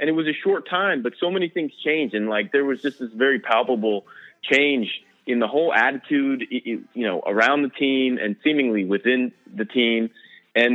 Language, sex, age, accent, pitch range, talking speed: English, male, 30-49, American, 110-140 Hz, 195 wpm